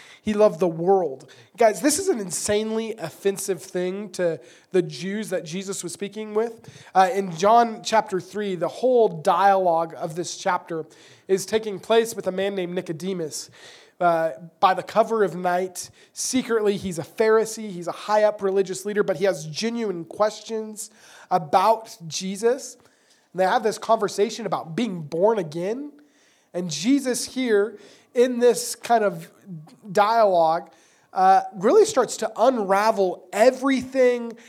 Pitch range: 180-225 Hz